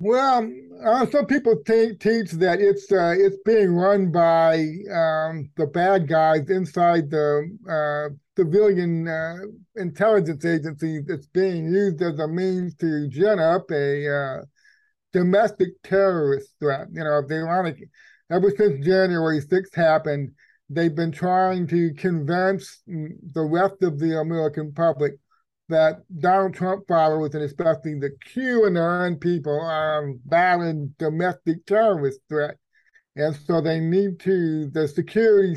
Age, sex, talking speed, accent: 50-69, male, 135 wpm, American